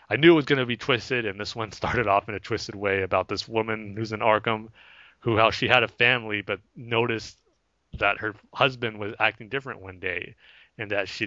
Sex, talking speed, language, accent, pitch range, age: male, 225 wpm, English, American, 100-115 Hz, 30-49